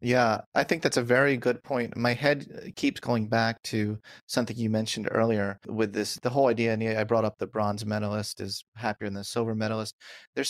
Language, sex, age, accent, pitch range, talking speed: English, male, 30-49, American, 110-135 Hz, 210 wpm